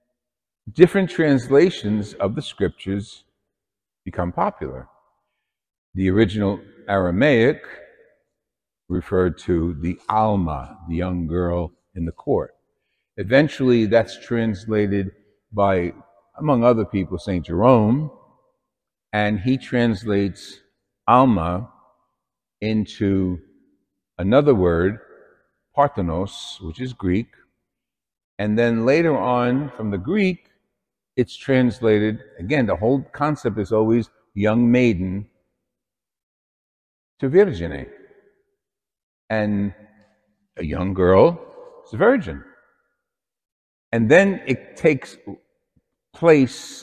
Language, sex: English, male